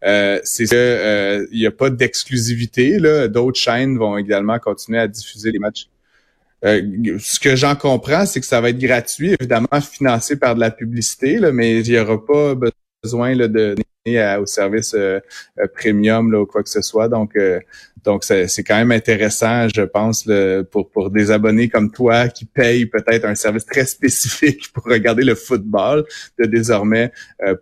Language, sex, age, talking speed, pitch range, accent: French, male, 30-49, 165 wpm, 110-130 Hz, Canadian